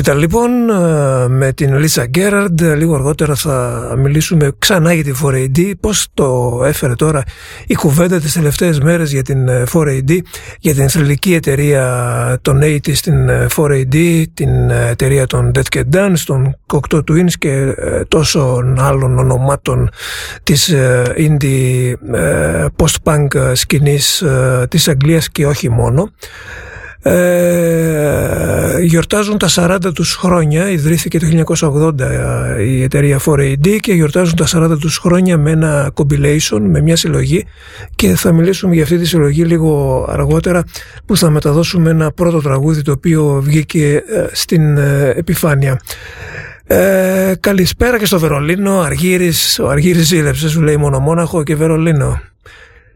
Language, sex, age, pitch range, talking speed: Greek, male, 50-69, 135-170 Hz, 125 wpm